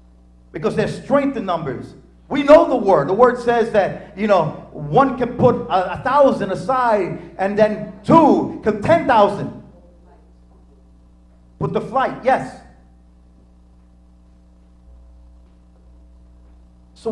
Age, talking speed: 40-59, 115 wpm